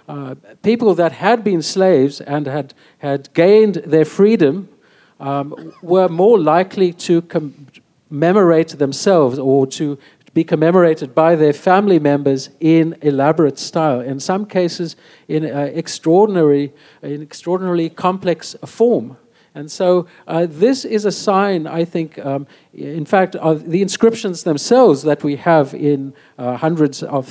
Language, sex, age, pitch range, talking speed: English, male, 50-69, 145-180 Hz, 140 wpm